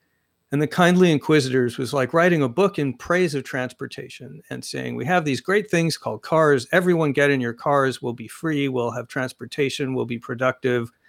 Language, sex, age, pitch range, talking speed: English, male, 50-69, 130-175 Hz, 195 wpm